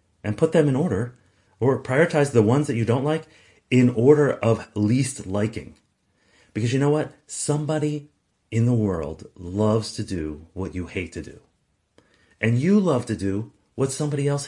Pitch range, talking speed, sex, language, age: 95-140 Hz, 175 wpm, male, English, 40-59